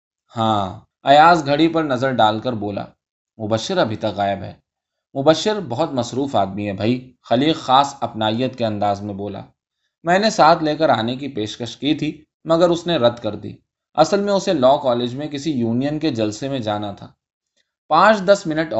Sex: male